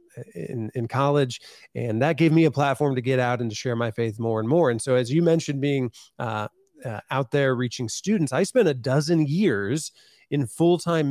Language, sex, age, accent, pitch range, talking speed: English, male, 30-49, American, 120-150 Hz, 210 wpm